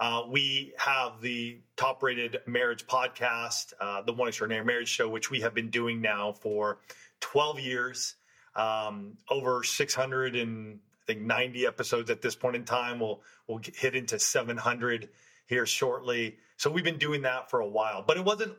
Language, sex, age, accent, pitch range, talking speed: English, male, 30-49, American, 120-145 Hz, 175 wpm